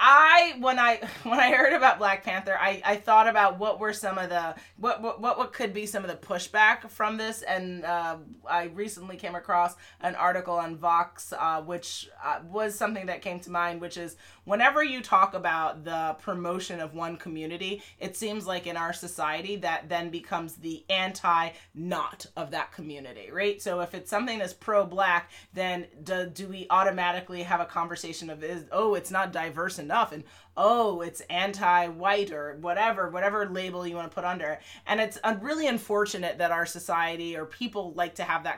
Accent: American